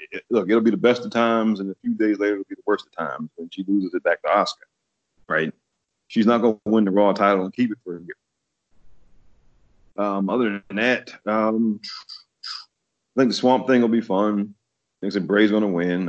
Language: English